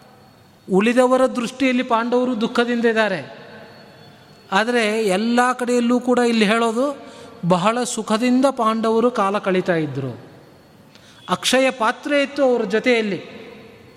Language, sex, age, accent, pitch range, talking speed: Kannada, male, 30-49, native, 200-250 Hz, 95 wpm